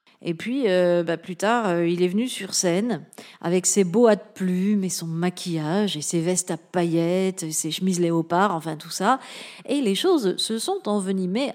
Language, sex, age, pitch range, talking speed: French, female, 40-59, 180-225 Hz, 190 wpm